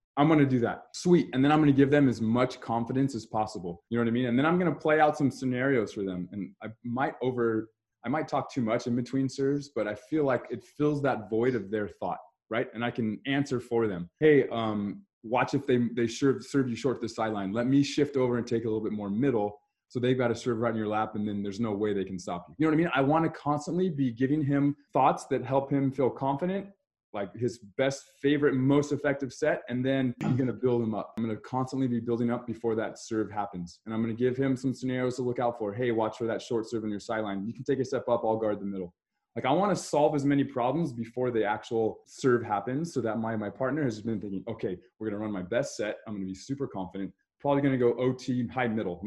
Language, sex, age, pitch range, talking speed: English, male, 20-39, 110-140 Hz, 265 wpm